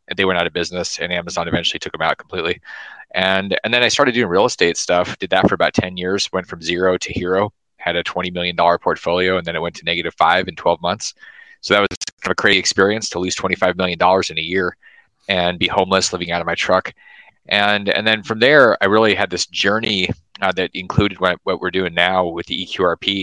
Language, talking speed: English, 235 wpm